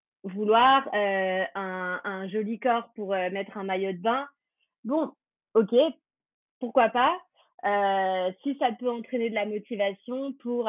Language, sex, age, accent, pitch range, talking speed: French, female, 30-49, French, 190-230 Hz, 145 wpm